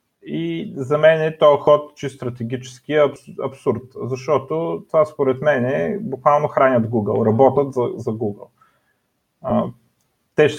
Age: 30-49